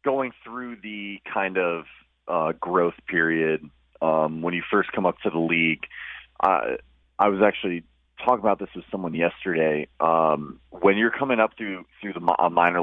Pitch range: 75-90 Hz